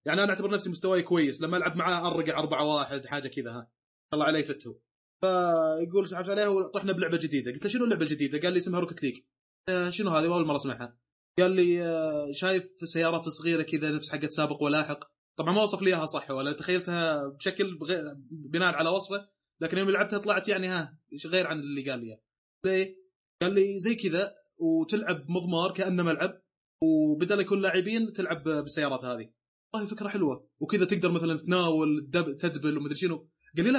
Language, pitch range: Arabic, 155-195 Hz